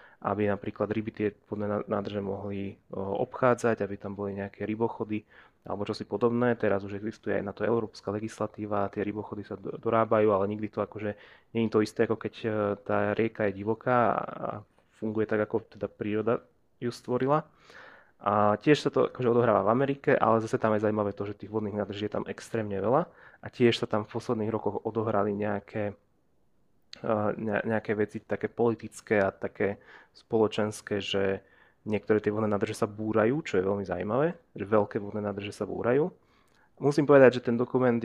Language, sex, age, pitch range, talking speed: Slovak, male, 20-39, 105-115 Hz, 175 wpm